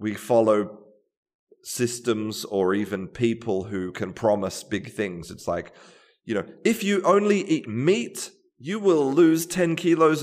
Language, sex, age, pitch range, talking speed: English, male, 30-49, 95-135 Hz, 145 wpm